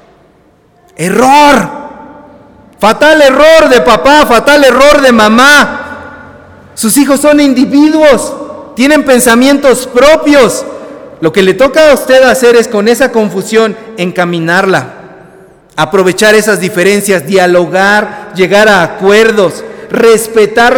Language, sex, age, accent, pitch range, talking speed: Spanish, male, 40-59, Mexican, 215-285 Hz, 105 wpm